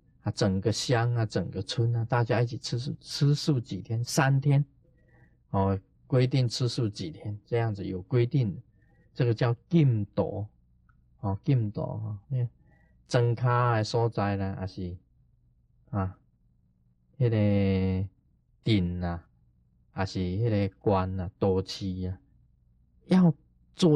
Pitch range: 95-145 Hz